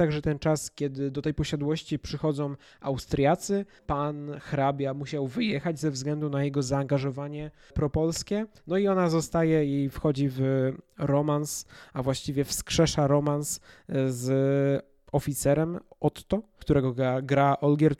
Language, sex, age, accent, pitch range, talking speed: Polish, male, 20-39, native, 140-165 Hz, 125 wpm